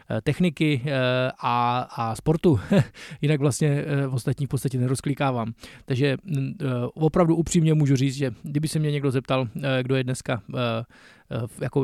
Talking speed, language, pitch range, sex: 120 wpm, Czech, 130-155 Hz, male